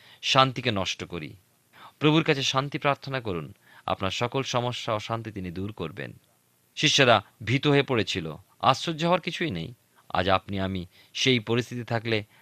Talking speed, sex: 145 wpm, male